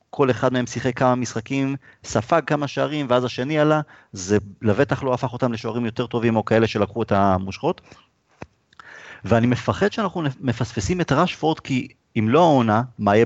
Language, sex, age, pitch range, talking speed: Hebrew, male, 30-49, 110-145 Hz, 165 wpm